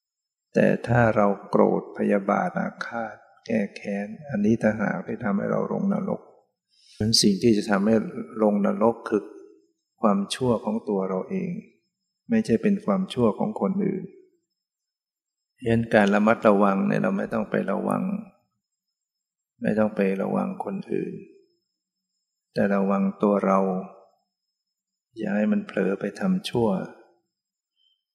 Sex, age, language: male, 60-79, English